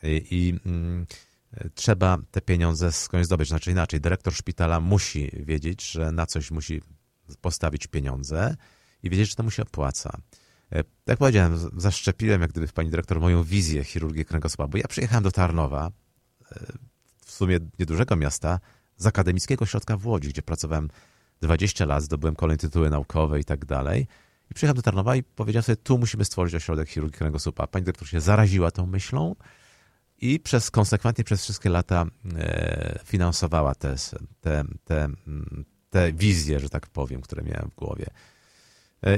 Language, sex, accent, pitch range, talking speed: Polish, male, native, 80-105 Hz, 160 wpm